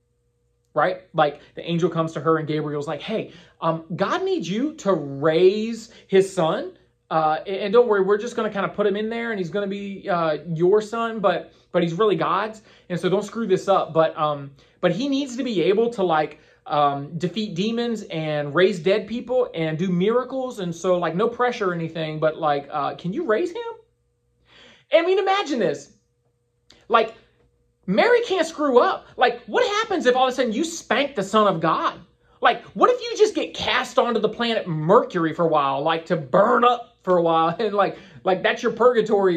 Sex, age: male, 30-49